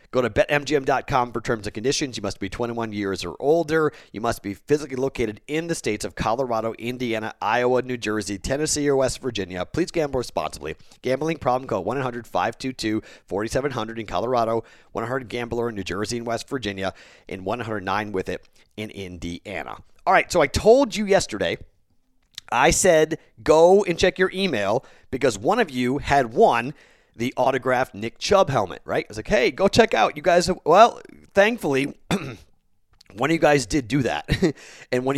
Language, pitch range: English, 115-155 Hz